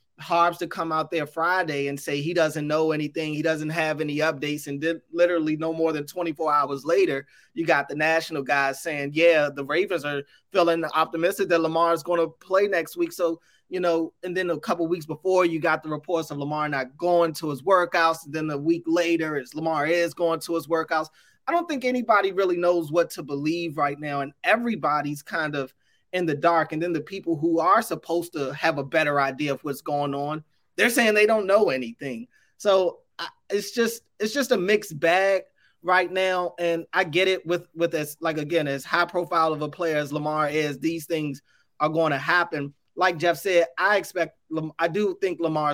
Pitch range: 145-170 Hz